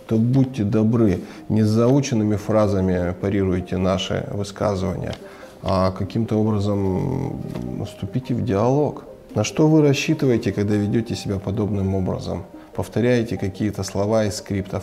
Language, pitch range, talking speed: Russian, 95-115 Hz, 115 wpm